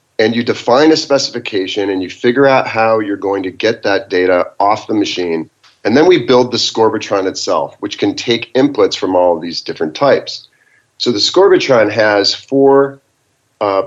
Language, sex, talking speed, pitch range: English, male, 180 wpm, 95-125 Hz